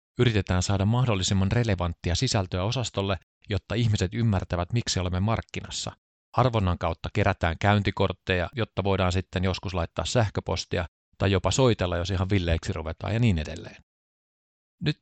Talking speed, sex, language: 130 wpm, male, Finnish